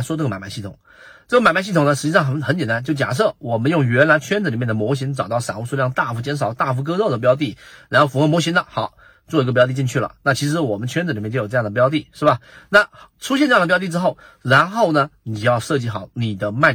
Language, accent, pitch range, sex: Chinese, native, 120-155 Hz, male